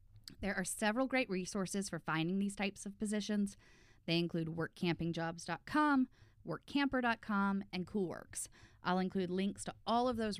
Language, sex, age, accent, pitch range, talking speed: English, female, 10-29, American, 150-200 Hz, 140 wpm